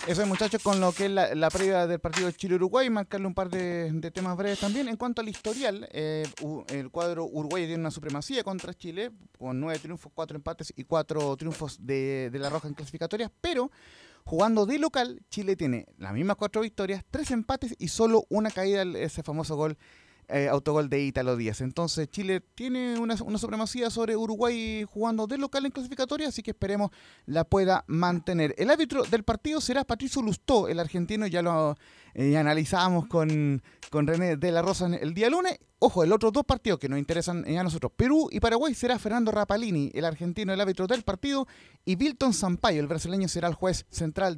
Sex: male